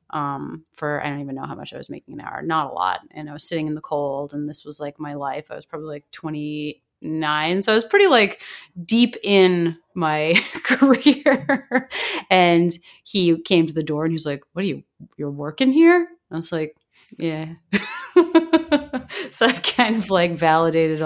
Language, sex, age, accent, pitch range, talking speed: English, female, 30-49, American, 150-210 Hz, 195 wpm